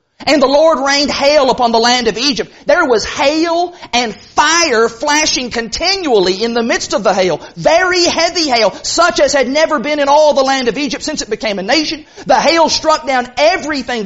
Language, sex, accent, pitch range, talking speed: English, male, American, 200-280 Hz, 200 wpm